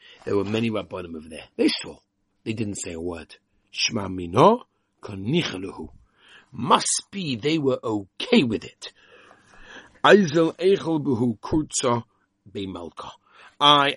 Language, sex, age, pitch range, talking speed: English, male, 60-79, 100-155 Hz, 90 wpm